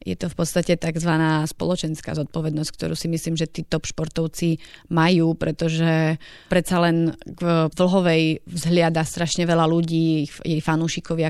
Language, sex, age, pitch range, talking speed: Slovak, female, 30-49, 165-180 Hz, 140 wpm